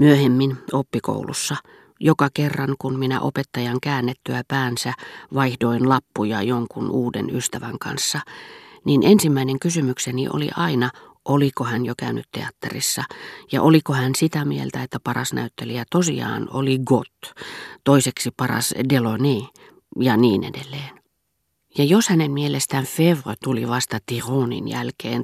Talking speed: 120 wpm